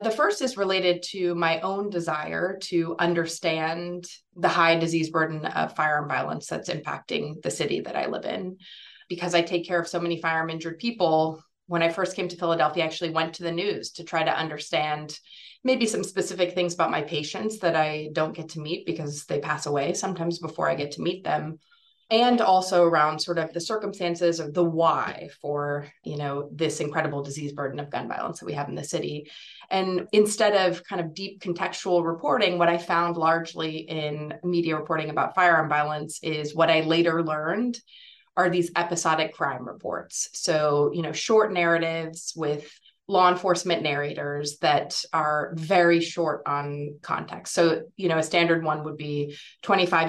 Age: 30-49